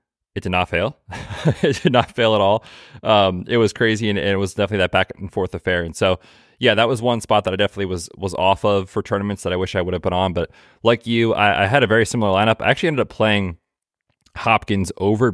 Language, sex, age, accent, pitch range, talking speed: English, male, 20-39, American, 95-110 Hz, 245 wpm